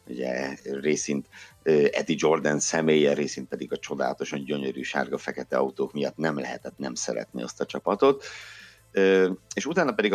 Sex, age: male, 60-79